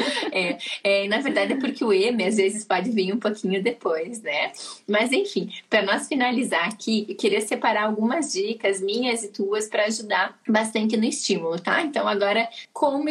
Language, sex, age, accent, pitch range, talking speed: Portuguese, female, 10-29, Brazilian, 195-230 Hz, 180 wpm